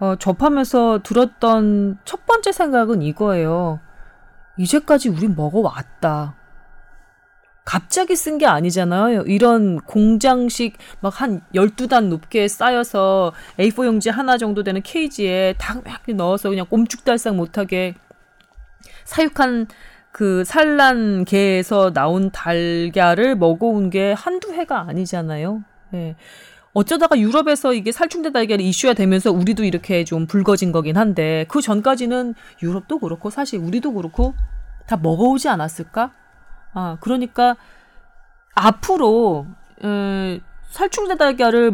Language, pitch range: Korean, 180-245 Hz